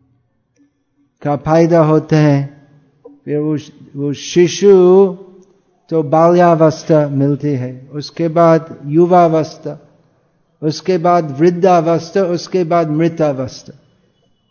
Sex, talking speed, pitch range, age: male, 90 wpm, 145-175 Hz, 50-69